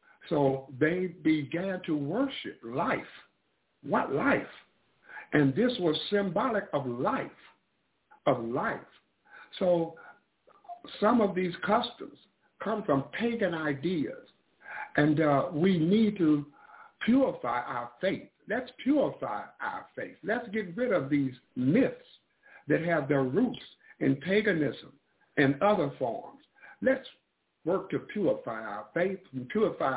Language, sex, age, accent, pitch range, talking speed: English, male, 60-79, American, 140-205 Hz, 120 wpm